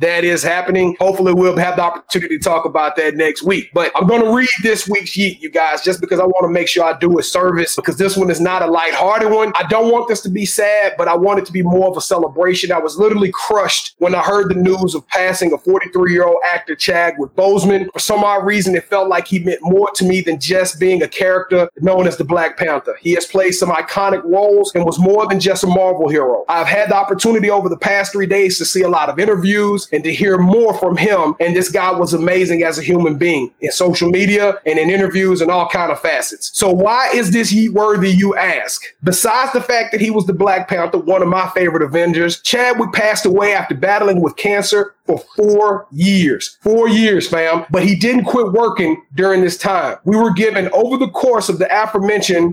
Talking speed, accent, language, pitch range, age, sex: 235 wpm, American, English, 175-205 Hz, 30-49, male